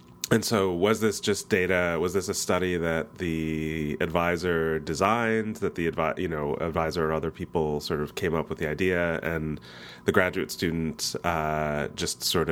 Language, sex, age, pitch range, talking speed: English, male, 30-49, 75-90 Hz, 175 wpm